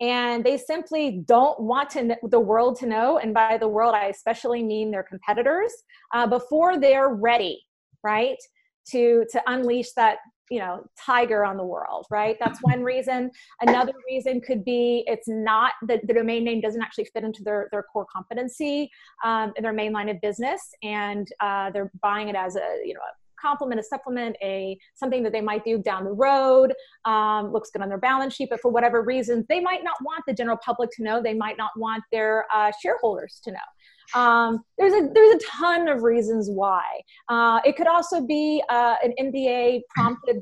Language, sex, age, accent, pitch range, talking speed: English, female, 30-49, American, 215-265 Hz, 195 wpm